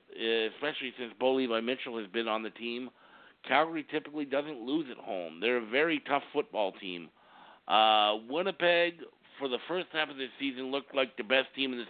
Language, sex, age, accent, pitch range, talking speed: English, male, 50-69, American, 110-150 Hz, 190 wpm